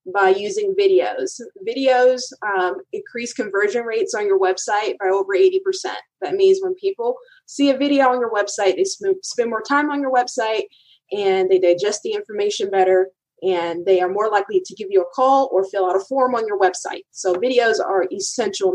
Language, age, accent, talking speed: English, 20-39, American, 190 wpm